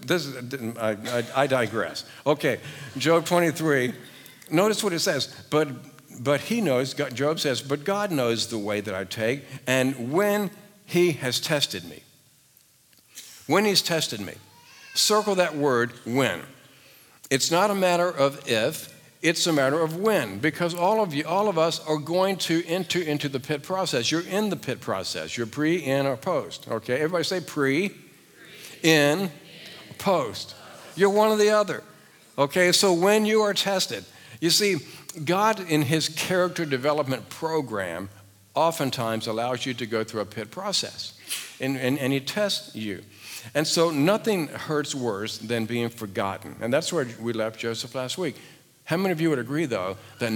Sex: male